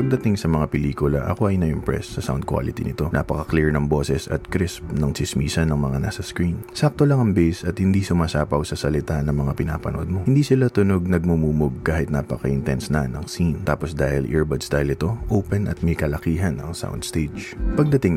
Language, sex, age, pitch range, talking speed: Filipino, male, 20-39, 75-100 Hz, 185 wpm